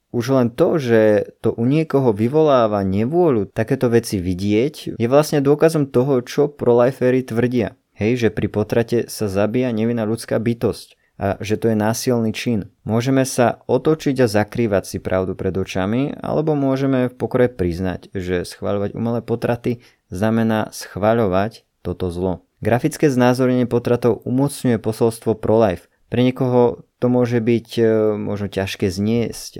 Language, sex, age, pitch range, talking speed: Slovak, male, 20-39, 100-125 Hz, 140 wpm